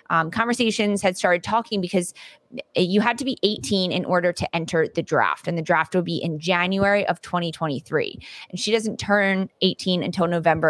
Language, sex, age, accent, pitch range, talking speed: English, female, 20-39, American, 165-205 Hz, 185 wpm